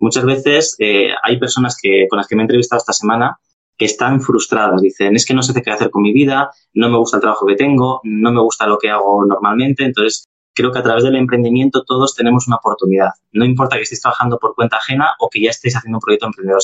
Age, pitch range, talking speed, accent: 20-39, 105-125 Hz, 245 wpm, Spanish